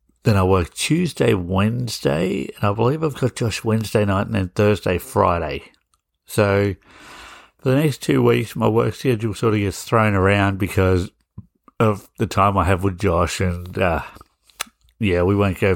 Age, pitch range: 60-79, 95-115 Hz